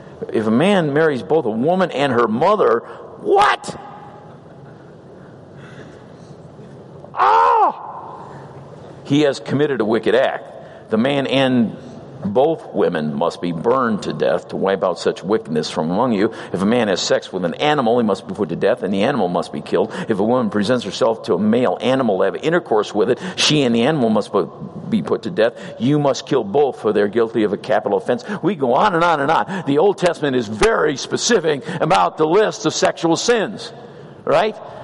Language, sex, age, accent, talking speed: English, male, 50-69, American, 195 wpm